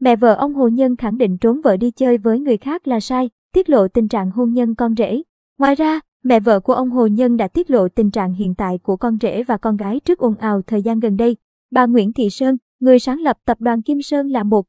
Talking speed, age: 265 wpm, 20-39